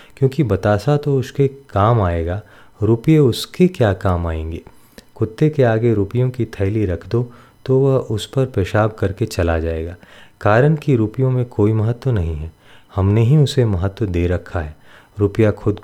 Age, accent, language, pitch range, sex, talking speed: 30-49, native, Hindi, 95-135 Hz, male, 175 wpm